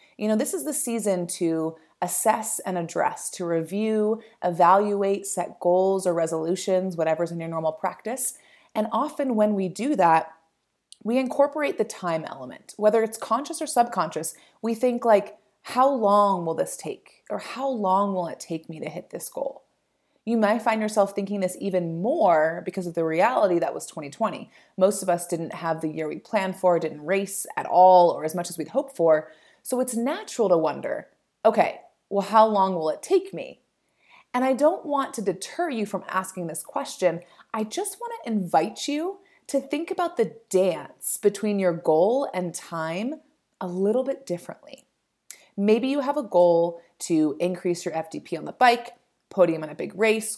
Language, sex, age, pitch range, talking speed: English, female, 30-49, 175-235 Hz, 185 wpm